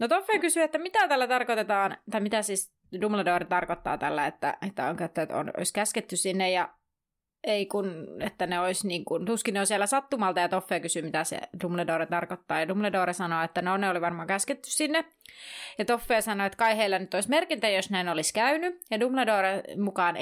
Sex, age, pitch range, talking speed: female, 30-49, 185-235 Hz, 195 wpm